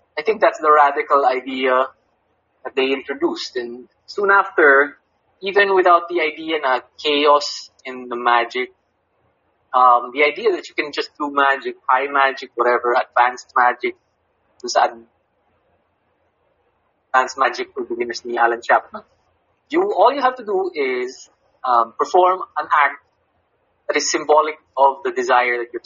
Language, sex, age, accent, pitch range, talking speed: English, male, 20-39, Filipino, 125-210 Hz, 145 wpm